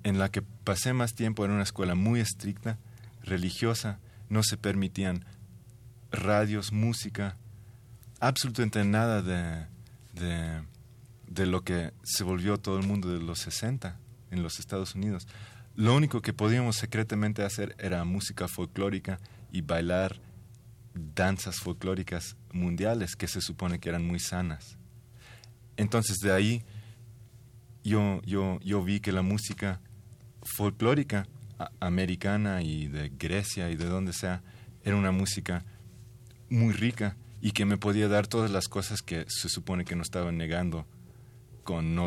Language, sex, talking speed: Spanish, male, 140 wpm